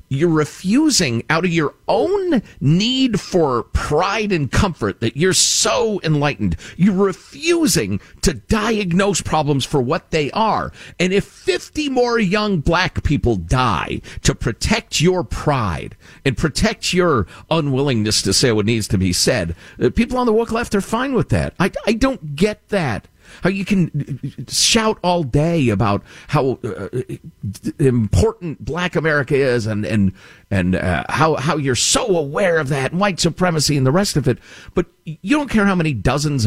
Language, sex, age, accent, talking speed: English, male, 50-69, American, 165 wpm